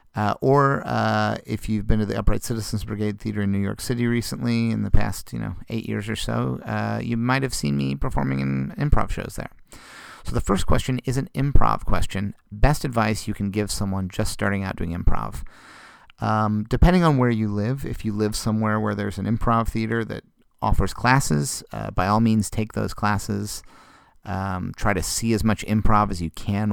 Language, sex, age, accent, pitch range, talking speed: English, male, 30-49, American, 95-115 Hz, 205 wpm